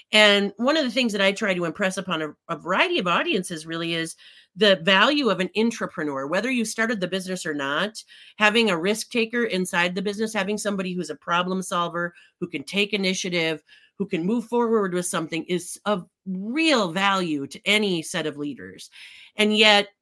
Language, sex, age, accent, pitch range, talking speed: English, female, 40-59, American, 170-210 Hz, 190 wpm